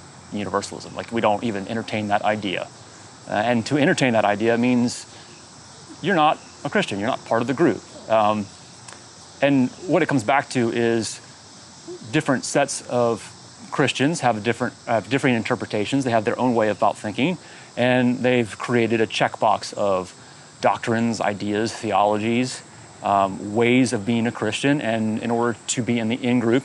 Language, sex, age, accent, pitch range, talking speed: English, male, 30-49, American, 110-125 Hz, 165 wpm